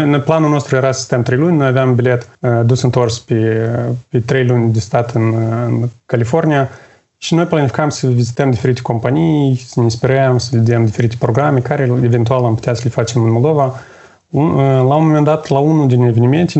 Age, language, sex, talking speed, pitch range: 30-49, Romanian, male, 180 wpm, 120-140 Hz